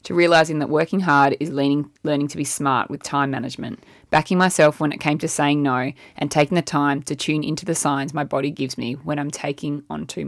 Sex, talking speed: female, 230 wpm